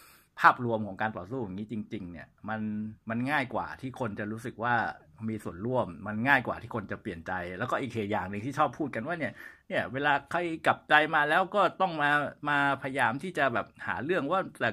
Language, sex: Thai, male